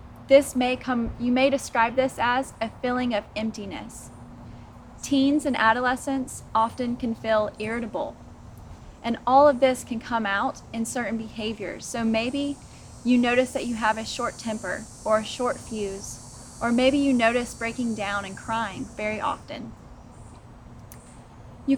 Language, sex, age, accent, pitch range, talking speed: English, female, 20-39, American, 220-255 Hz, 150 wpm